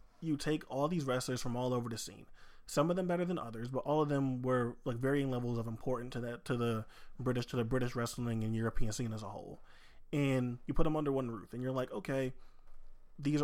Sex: male